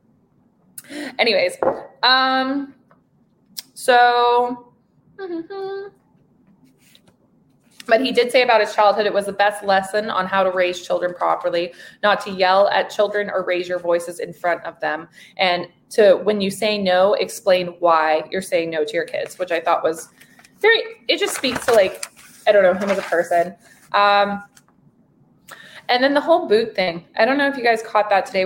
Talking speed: 170 wpm